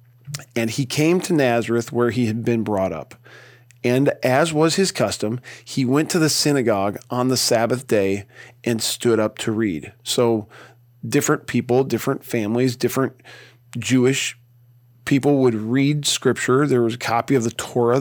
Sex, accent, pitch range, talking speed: male, American, 115-140 Hz, 160 wpm